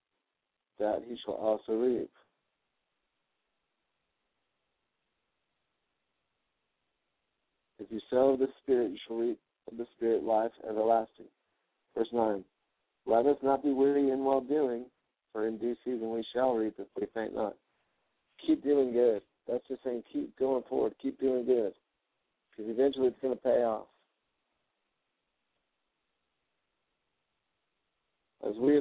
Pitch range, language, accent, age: 115-135 Hz, English, American, 60-79